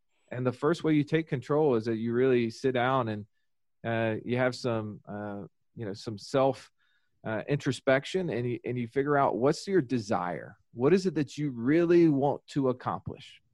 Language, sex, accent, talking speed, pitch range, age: English, male, American, 185 wpm, 115-155 Hz, 40-59